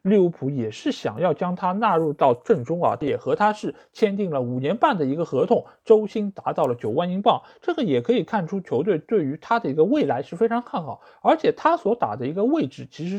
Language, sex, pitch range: Chinese, male, 160-240 Hz